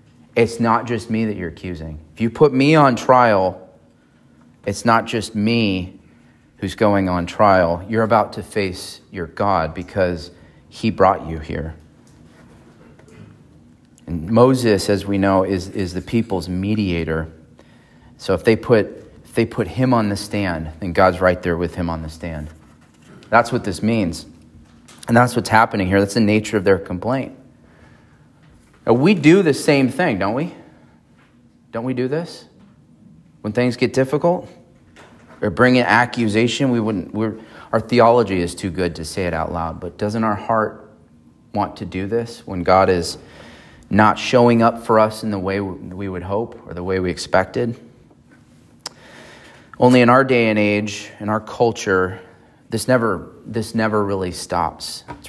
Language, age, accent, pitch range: English, 30-49, American, 90-115 Hz